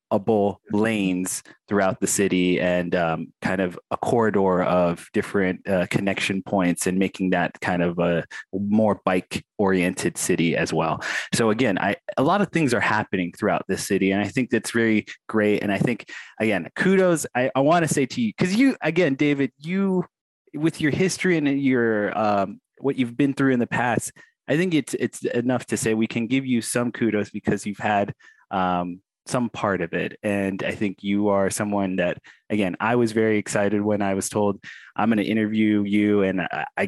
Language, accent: English, American